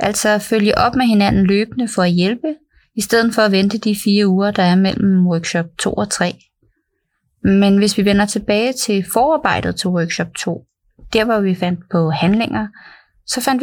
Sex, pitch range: female, 185-230 Hz